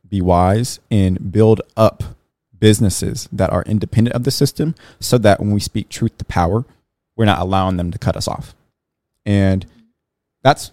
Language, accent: English, American